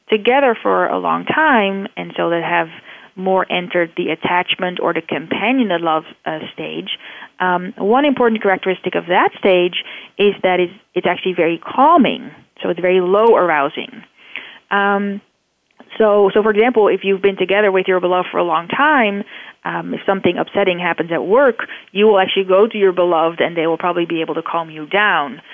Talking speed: 185 wpm